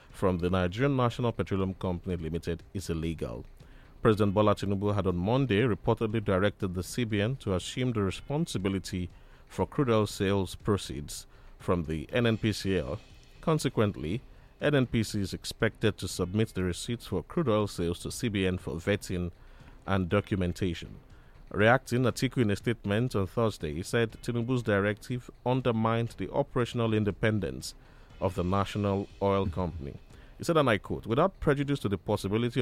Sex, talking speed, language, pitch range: male, 145 wpm, English, 90-115 Hz